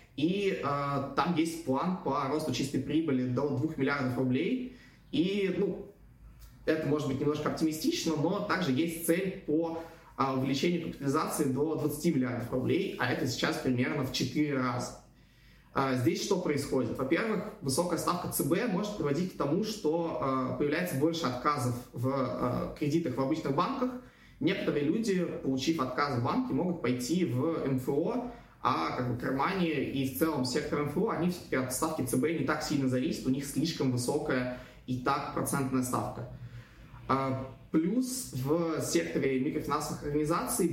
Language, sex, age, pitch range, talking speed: Turkish, male, 20-39, 135-165 Hz, 150 wpm